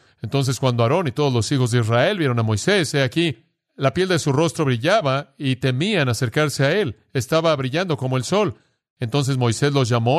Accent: Mexican